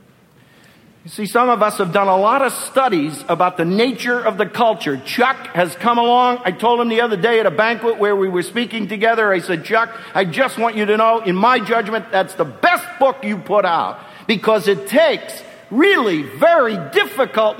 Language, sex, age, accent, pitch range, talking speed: English, male, 50-69, American, 145-230 Hz, 205 wpm